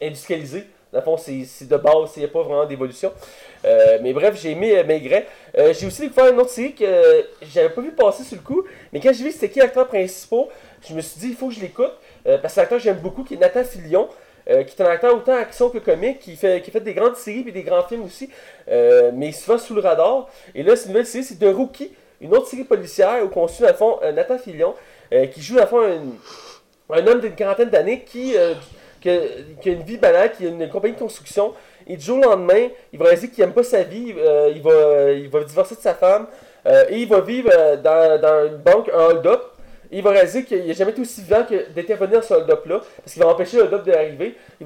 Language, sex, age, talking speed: French, male, 30-49, 260 wpm